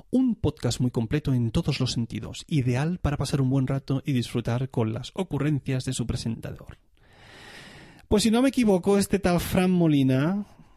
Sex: male